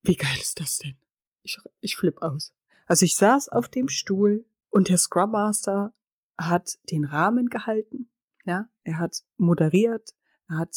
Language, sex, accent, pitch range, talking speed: German, female, German, 165-215 Hz, 160 wpm